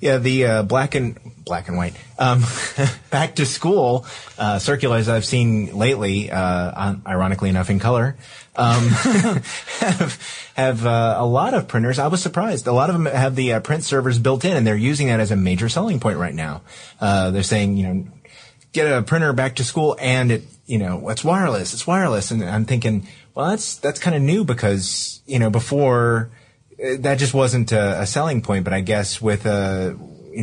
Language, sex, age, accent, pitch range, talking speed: English, male, 30-49, American, 100-130 Hz, 195 wpm